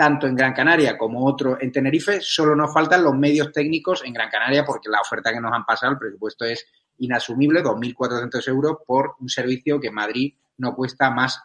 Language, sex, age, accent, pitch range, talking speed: Spanish, male, 30-49, Spanish, 115-140 Hz, 205 wpm